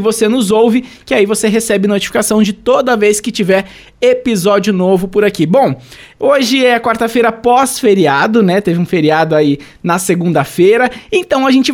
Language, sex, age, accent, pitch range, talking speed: Portuguese, male, 20-39, Brazilian, 200-260 Hz, 165 wpm